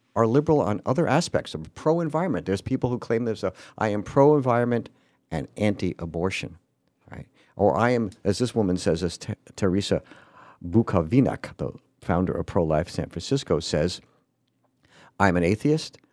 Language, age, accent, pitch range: English, 50-69, American, 90-125 Hz